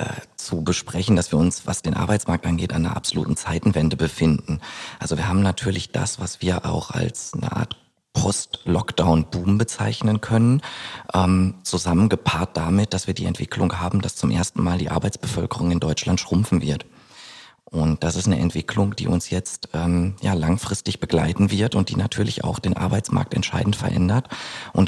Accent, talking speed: German, 160 wpm